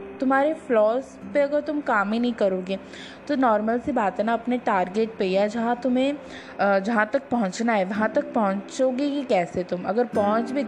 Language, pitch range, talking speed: English, 200-255 Hz, 190 wpm